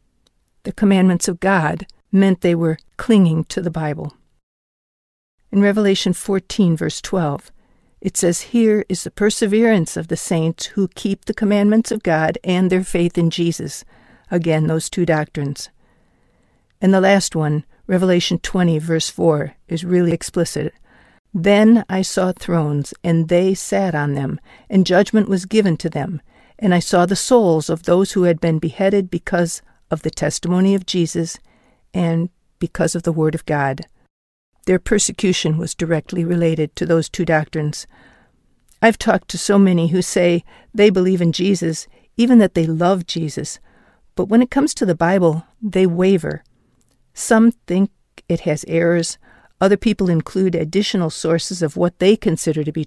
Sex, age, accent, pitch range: female, 60-79, American, 160-195 Hz